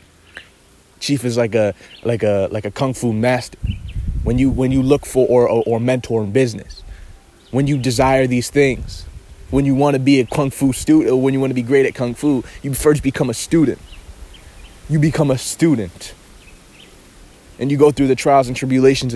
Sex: male